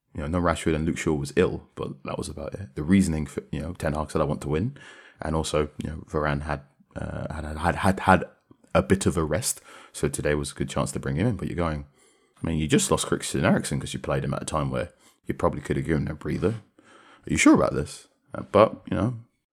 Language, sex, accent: English, male, British